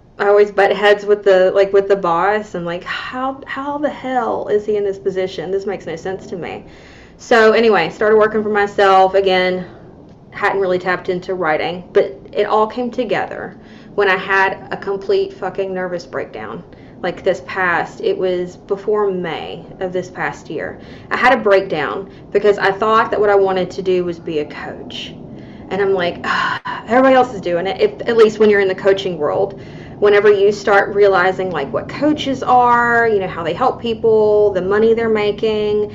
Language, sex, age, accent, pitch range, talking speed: English, female, 20-39, American, 190-220 Hz, 190 wpm